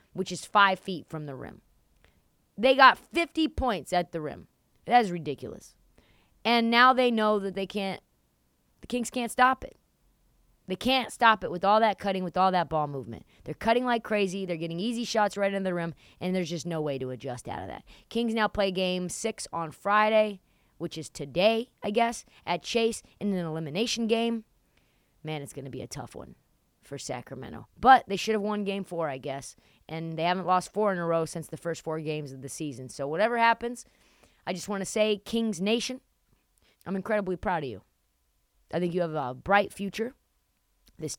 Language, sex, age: English, female, 20-39